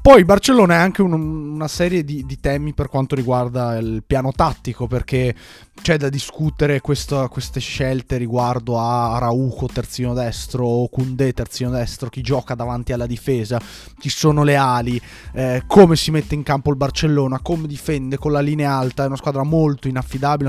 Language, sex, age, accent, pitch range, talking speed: Italian, male, 20-39, native, 120-150 Hz, 175 wpm